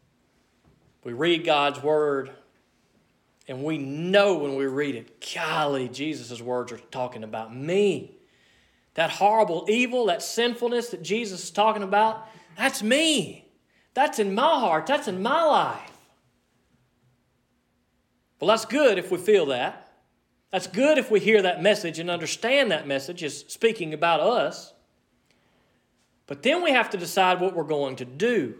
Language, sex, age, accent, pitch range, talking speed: English, male, 40-59, American, 155-250 Hz, 150 wpm